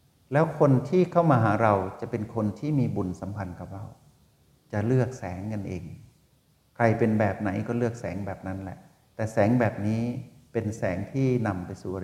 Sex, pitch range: male, 100-130 Hz